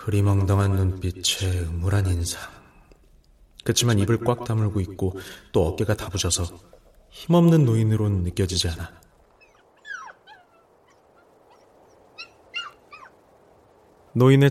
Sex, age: male, 30-49